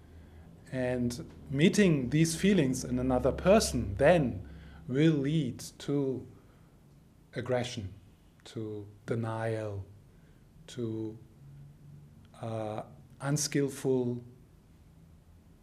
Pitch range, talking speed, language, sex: 110-140 Hz, 65 wpm, English, male